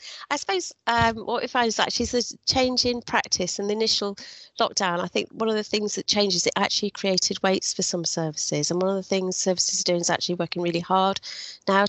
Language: English